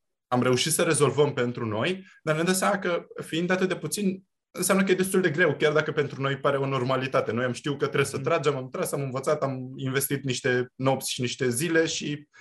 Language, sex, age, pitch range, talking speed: Romanian, male, 20-39, 120-155 Hz, 220 wpm